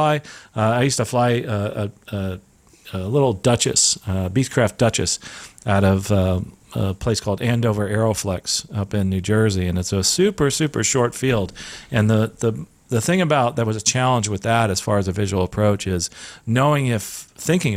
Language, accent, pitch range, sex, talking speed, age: English, American, 95-120 Hz, male, 185 wpm, 40-59